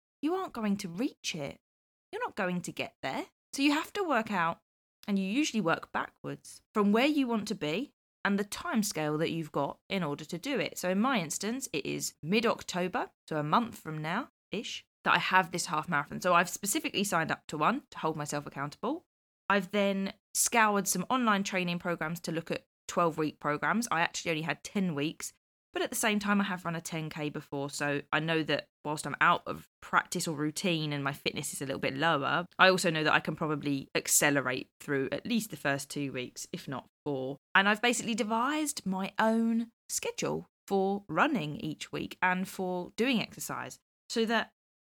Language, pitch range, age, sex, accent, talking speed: English, 150-220 Hz, 20-39, female, British, 205 wpm